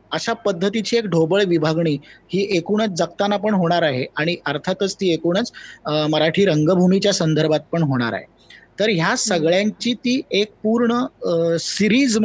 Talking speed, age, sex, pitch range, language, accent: 90 wpm, 20-39, male, 150-185 Hz, Marathi, native